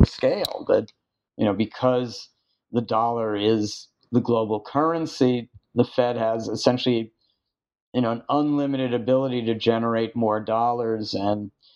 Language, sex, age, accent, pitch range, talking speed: English, male, 50-69, American, 110-130 Hz, 130 wpm